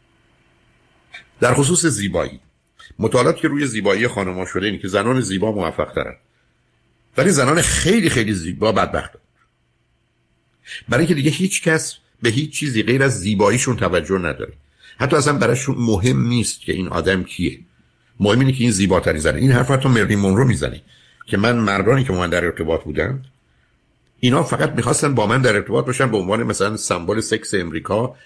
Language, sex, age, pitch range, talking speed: Persian, male, 60-79, 95-130 Hz, 165 wpm